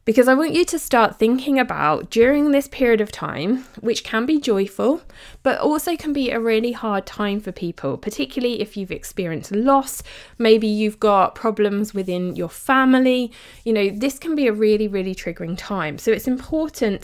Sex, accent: female, British